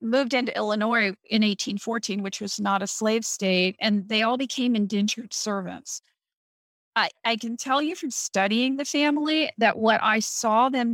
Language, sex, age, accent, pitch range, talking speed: English, female, 40-59, American, 205-240 Hz, 170 wpm